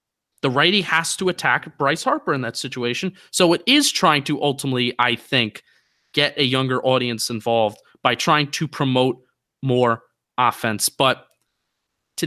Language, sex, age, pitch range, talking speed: English, male, 20-39, 130-170 Hz, 150 wpm